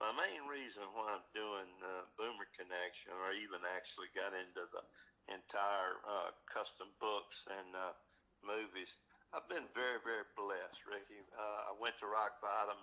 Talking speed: 160 wpm